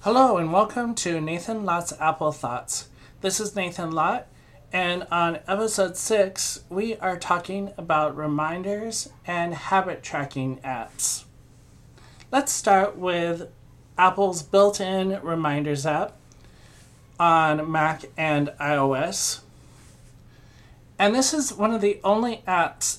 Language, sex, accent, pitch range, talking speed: English, male, American, 135-185 Hz, 115 wpm